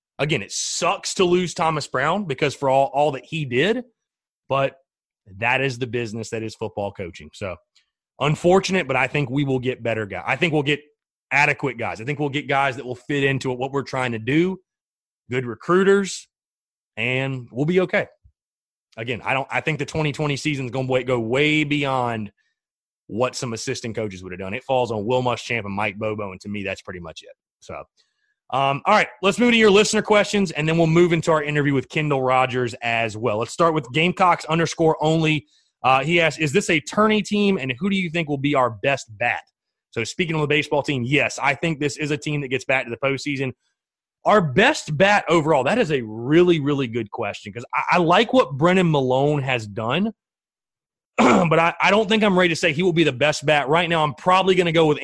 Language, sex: English, male